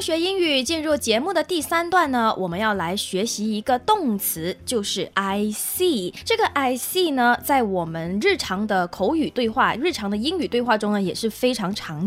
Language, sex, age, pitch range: Chinese, female, 20-39, 205-315 Hz